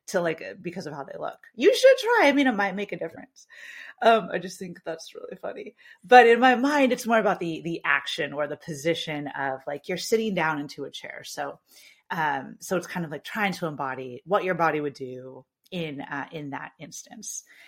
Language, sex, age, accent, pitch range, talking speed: English, female, 30-49, American, 160-235 Hz, 220 wpm